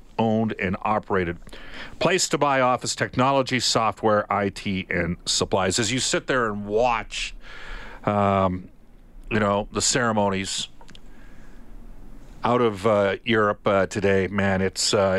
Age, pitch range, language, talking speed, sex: 50-69, 95-120 Hz, English, 125 wpm, male